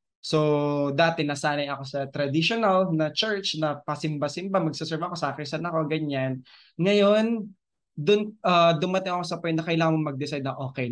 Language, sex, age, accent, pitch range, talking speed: Filipino, male, 20-39, native, 135-170 Hz, 155 wpm